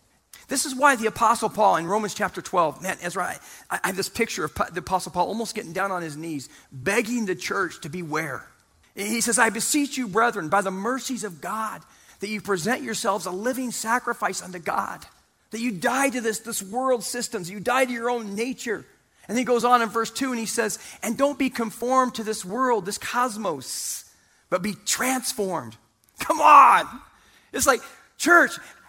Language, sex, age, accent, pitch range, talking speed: English, male, 40-59, American, 185-270 Hz, 195 wpm